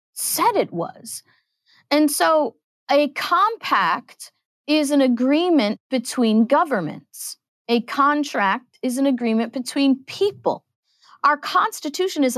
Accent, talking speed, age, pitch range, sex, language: American, 105 wpm, 40-59, 220-310 Hz, female, English